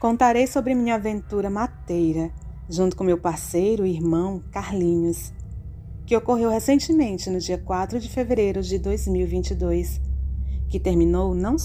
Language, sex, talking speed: Portuguese, female, 130 wpm